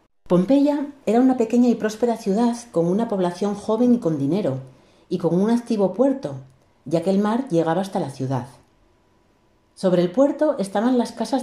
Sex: female